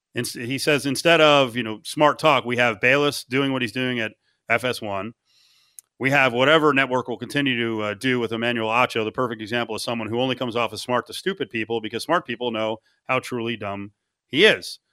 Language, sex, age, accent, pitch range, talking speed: English, male, 40-59, American, 115-145 Hz, 210 wpm